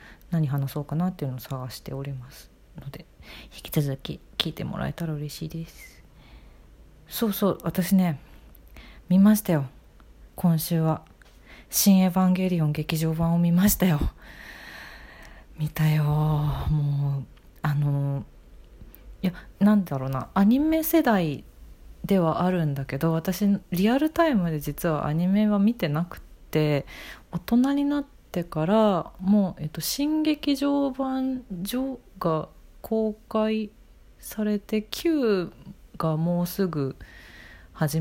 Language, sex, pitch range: Japanese, female, 145-195 Hz